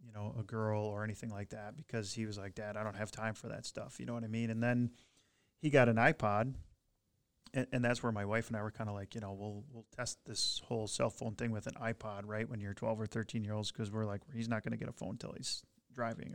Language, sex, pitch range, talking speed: English, male, 110-125 Hz, 275 wpm